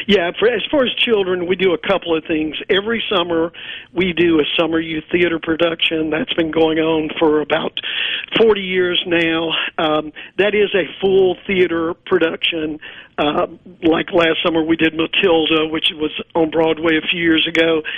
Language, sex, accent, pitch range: English, male, American, 160-185 Hz